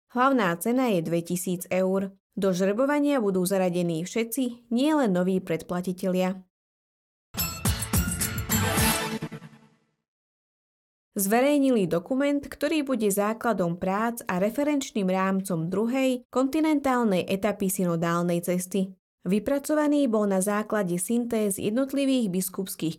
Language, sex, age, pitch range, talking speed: Slovak, female, 20-39, 185-245 Hz, 90 wpm